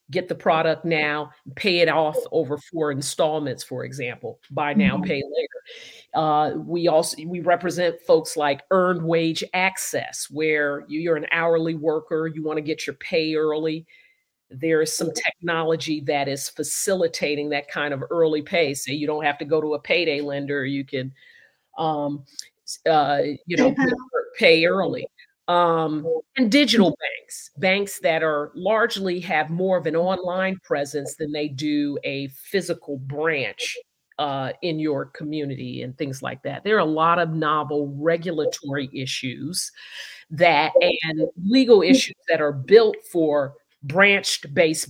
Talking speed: 150 wpm